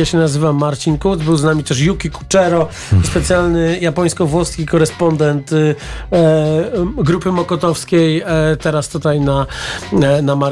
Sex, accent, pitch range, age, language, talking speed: male, native, 140-170 Hz, 40-59, Polish, 120 wpm